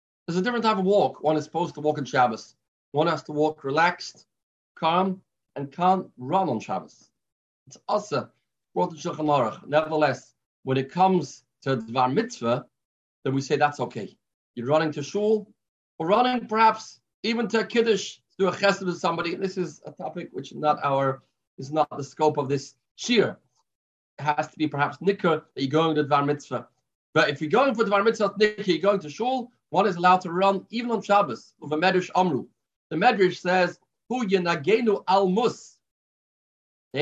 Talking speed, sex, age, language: 175 wpm, male, 30-49, English